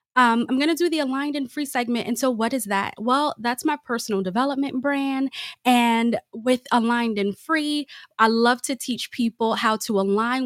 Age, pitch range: 20-39, 220-285 Hz